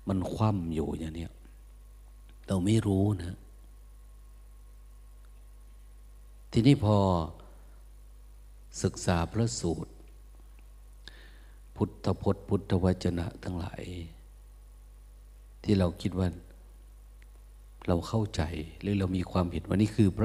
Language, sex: Thai, male